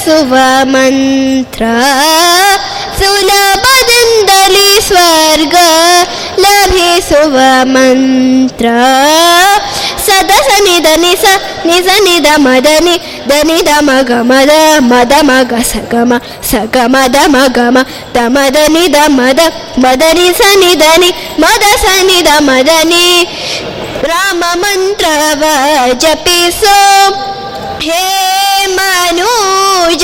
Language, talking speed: Kannada, 60 wpm